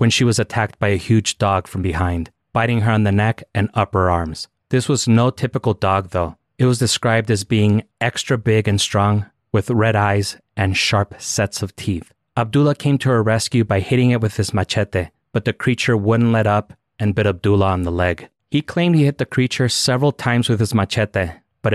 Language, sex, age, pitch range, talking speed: English, male, 30-49, 100-120 Hz, 210 wpm